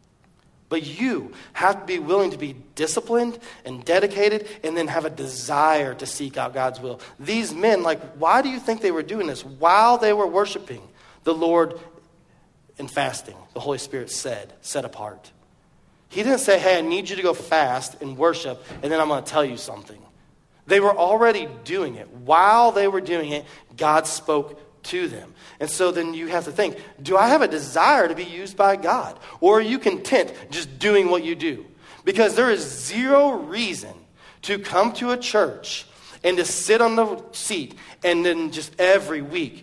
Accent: American